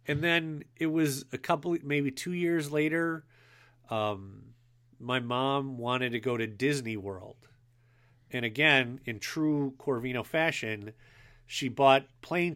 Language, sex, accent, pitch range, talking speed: English, male, American, 120-135 Hz, 135 wpm